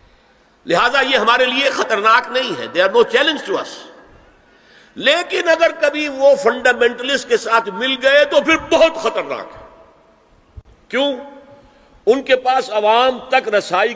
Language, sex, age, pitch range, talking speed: Urdu, male, 50-69, 185-290 Hz, 135 wpm